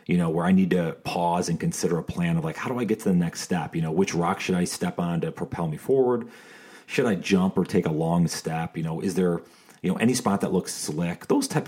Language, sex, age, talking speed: English, male, 40-59, 275 wpm